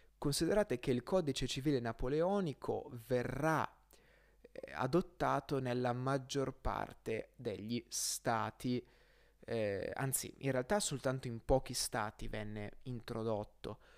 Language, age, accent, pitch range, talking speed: Italian, 20-39, native, 115-145 Hz, 100 wpm